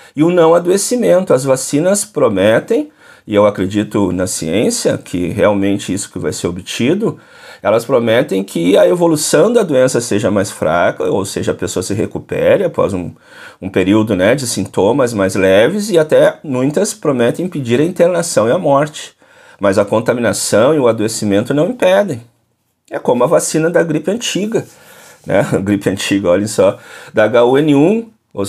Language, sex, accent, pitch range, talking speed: Portuguese, male, Brazilian, 105-170 Hz, 165 wpm